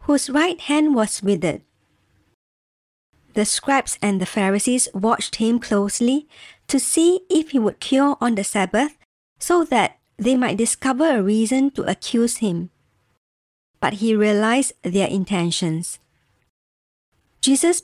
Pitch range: 205-275 Hz